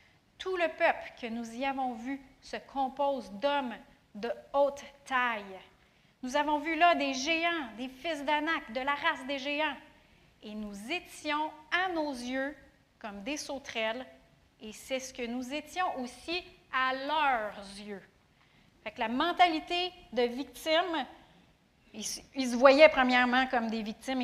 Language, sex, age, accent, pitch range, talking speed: French, female, 30-49, Canadian, 245-300 Hz, 150 wpm